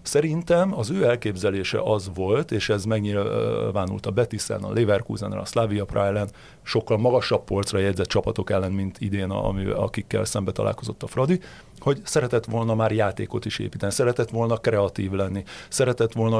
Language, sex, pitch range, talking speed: Hungarian, male, 100-125 Hz, 155 wpm